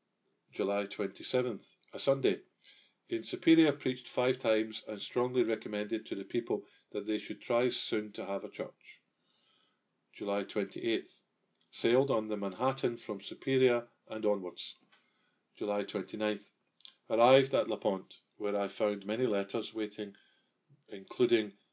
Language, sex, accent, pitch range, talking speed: English, male, British, 100-125 Hz, 130 wpm